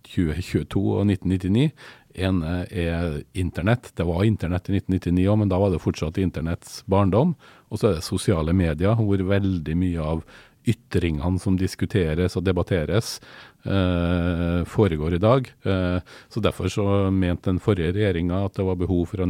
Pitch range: 85-100 Hz